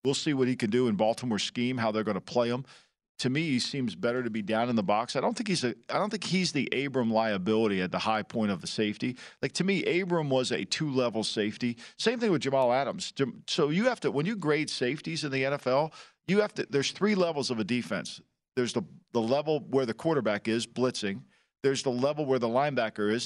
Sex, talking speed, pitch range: male, 245 wpm, 115-155 Hz